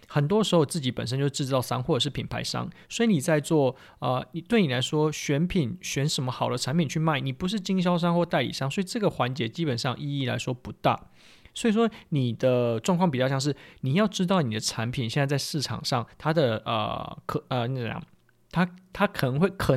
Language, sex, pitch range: Chinese, male, 130-170 Hz